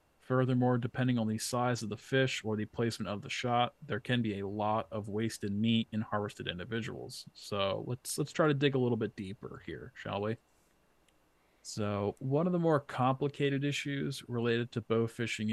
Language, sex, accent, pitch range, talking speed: English, male, American, 105-125 Hz, 190 wpm